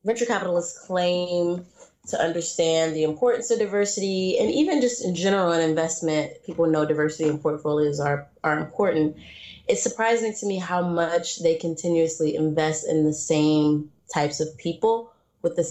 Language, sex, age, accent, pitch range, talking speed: English, female, 20-39, American, 155-180 Hz, 155 wpm